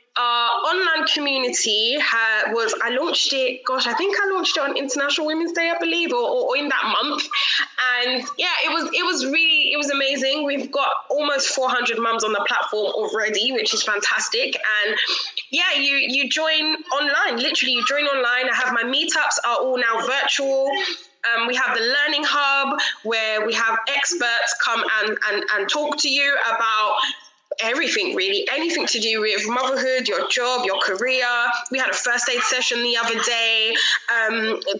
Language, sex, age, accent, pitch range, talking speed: English, female, 20-39, British, 240-315 Hz, 180 wpm